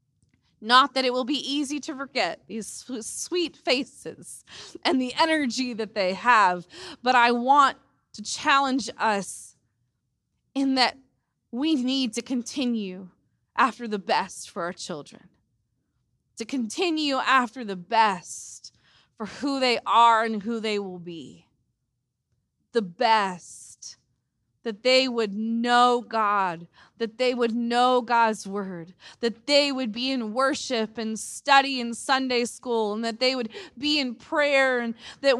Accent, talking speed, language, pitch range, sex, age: American, 140 wpm, English, 200-270 Hz, female, 20-39